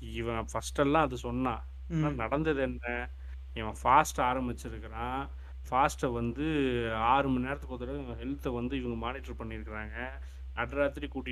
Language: Tamil